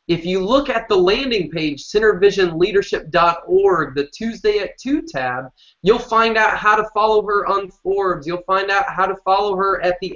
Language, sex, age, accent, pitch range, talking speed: English, male, 20-39, American, 170-220 Hz, 185 wpm